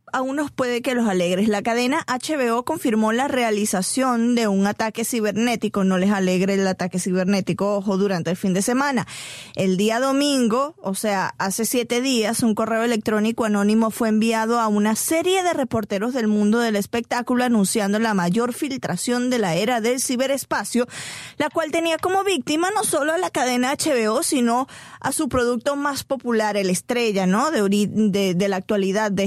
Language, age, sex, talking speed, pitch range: Spanish, 20-39, female, 180 wpm, 210-265 Hz